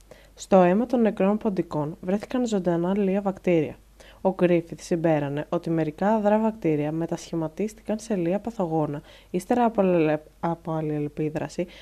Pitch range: 160-200 Hz